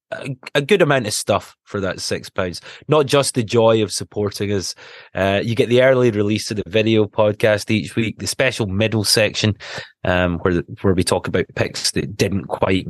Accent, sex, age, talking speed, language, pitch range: British, male, 20-39, 190 wpm, English, 95-115 Hz